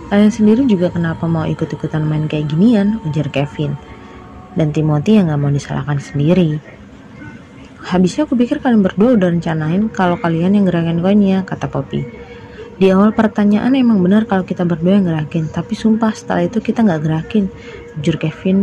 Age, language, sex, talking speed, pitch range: 20-39, Indonesian, female, 165 wpm, 160-210 Hz